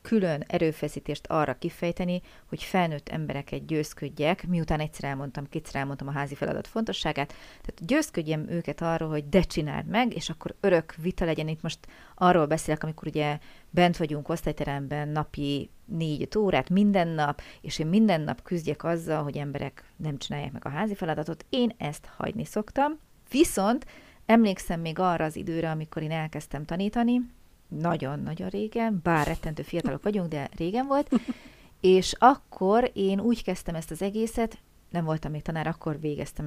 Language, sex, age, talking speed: Hungarian, female, 30-49, 155 wpm